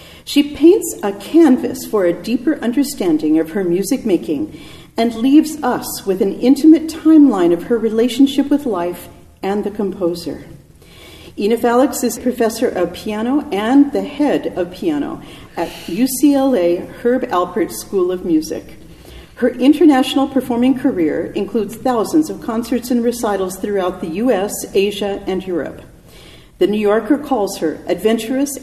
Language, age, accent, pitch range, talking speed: English, 50-69, American, 195-280 Hz, 140 wpm